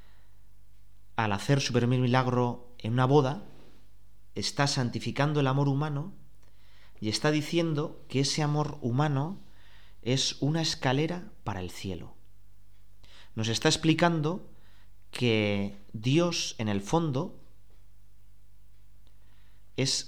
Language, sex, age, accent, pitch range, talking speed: Spanish, male, 30-49, Spanish, 100-135 Hz, 105 wpm